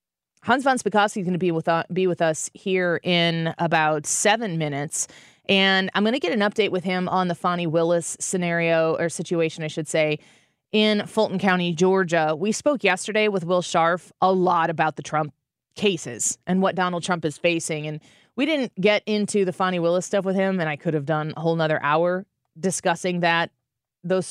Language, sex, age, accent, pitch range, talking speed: English, female, 20-39, American, 160-190 Hz, 195 wpm